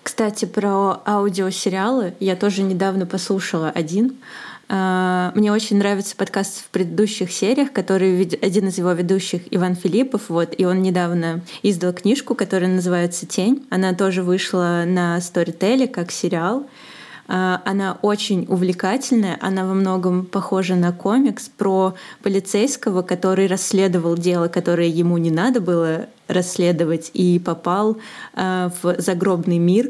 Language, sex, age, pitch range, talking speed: Russian, female, 20-39, 175-205 Hz, 130 wpm